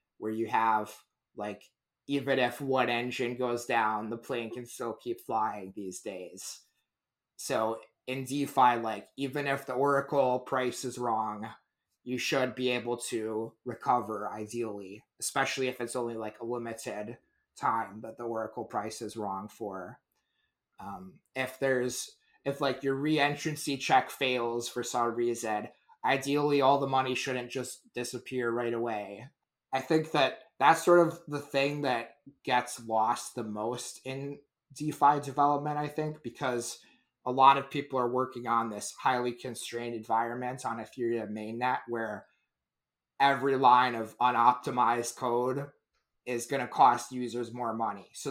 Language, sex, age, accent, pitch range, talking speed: English, male, 20-39, American, 115-140 Hz, 150 wpm